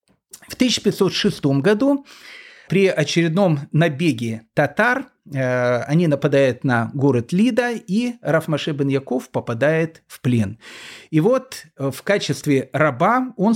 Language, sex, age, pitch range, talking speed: Russian, male, 40-59, 135-210 Hz, 100 wpm